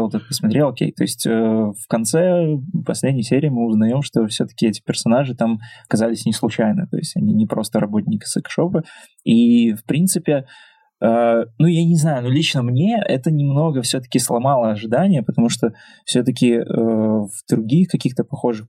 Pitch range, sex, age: 115-155 Hz, male, 20-39